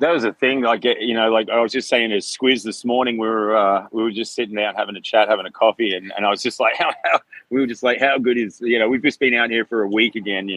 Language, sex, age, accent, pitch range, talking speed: English, male, 30-49, Australian, 100-120 Hz, 325 wpm